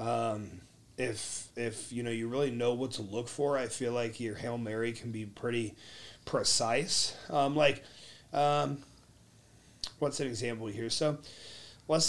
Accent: American